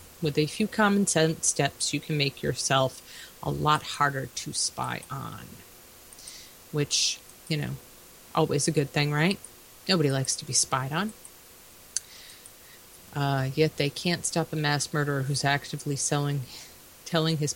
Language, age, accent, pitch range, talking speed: English, 30-49, American, 140-165 Hz, 145 wpm